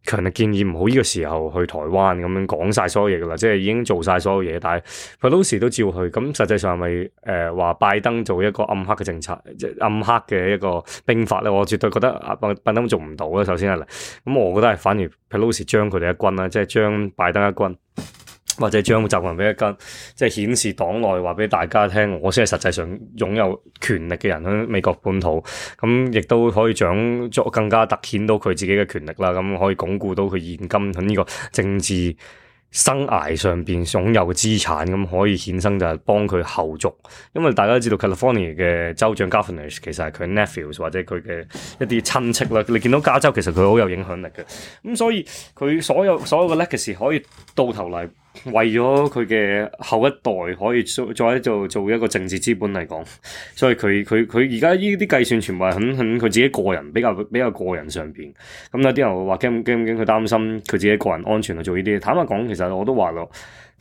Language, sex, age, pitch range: Chinese, male, 20-39, 90-115 Hz